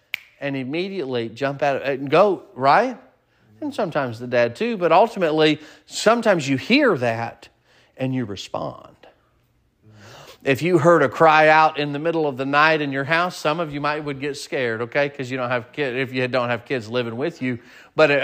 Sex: male